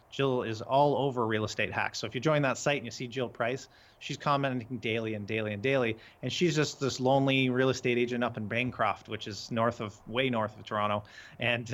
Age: 30-49